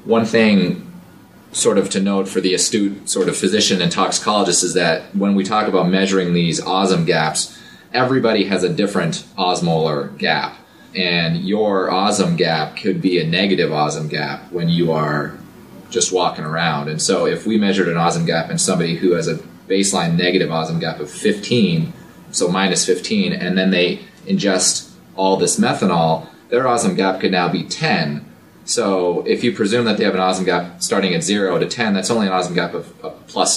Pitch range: 85-100 Hz